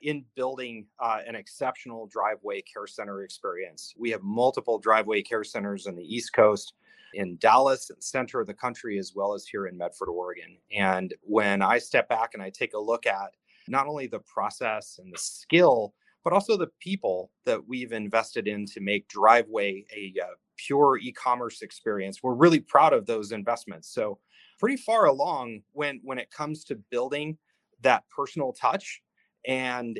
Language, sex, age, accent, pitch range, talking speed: English, male, 30-49, American, 105-145 Hz, 175 wpm